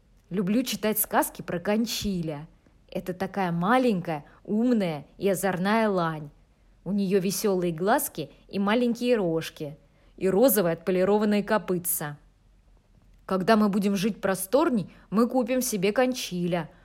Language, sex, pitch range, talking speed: Russian, female, 175-230 Hz, 115 wpm